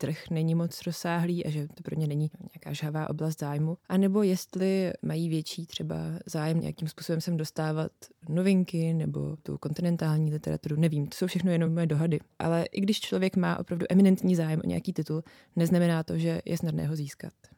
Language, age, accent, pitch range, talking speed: Czech, 20-39, native, 160-175 Hz, 190 wpm